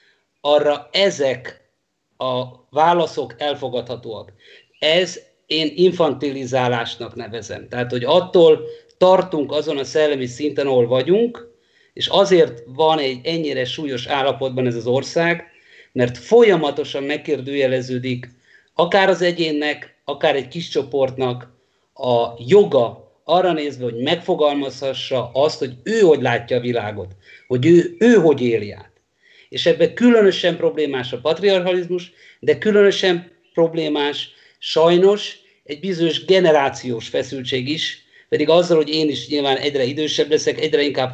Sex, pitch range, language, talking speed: male, 130-180 Hz, Hungarian, 120 wpm